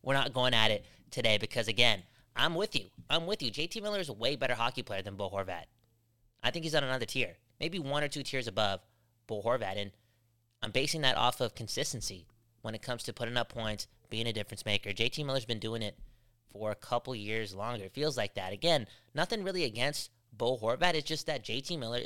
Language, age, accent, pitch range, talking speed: English, 20-39, American, 110-140 Hz, 225 wpm